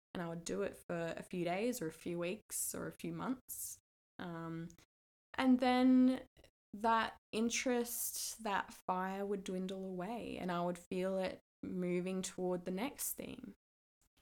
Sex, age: female, 20-39